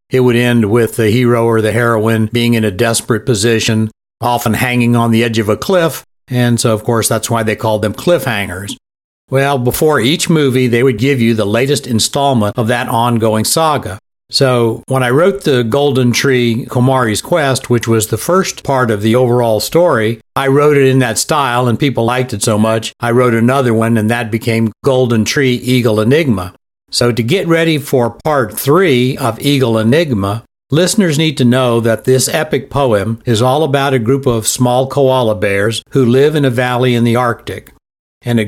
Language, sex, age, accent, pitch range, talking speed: English, male, 60-79, American, 115-135 Hz, 195 wpm